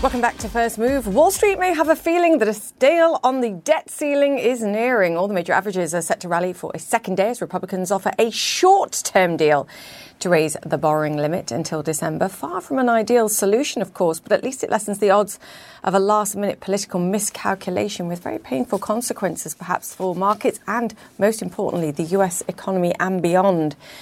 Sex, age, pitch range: female, 40-59, 165-225 Hz